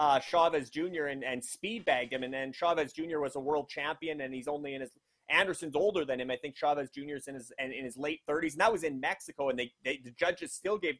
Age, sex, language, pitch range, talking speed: 30-49, male, English, 130-160 Hz, 255 wpm